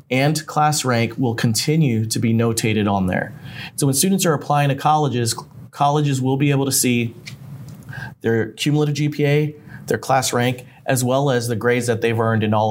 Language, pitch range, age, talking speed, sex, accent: English, 115-145 Hz, 30-49, 185 wpm, male, American